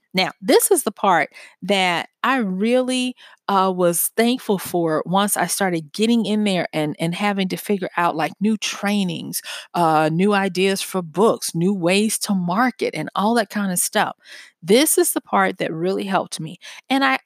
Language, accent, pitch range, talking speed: English, American, 175-230 Hz, 180 wpm